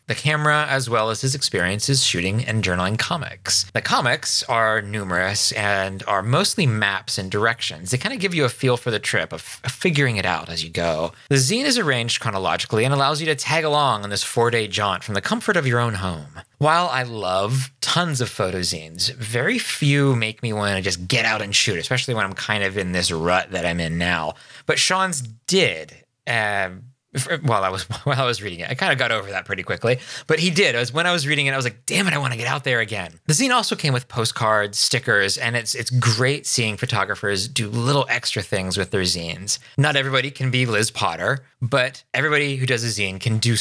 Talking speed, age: 230 wpm, 20-39